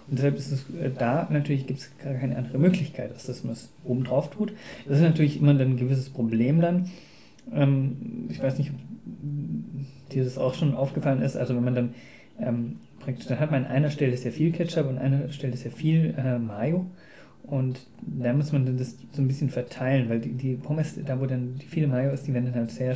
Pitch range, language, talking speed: 125-150 Hz, German, 225 wpm